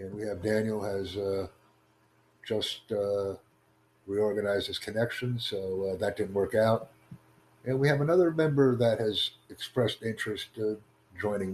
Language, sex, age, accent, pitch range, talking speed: English, male, 60-79, American, 105-130 Hz, 145 wpm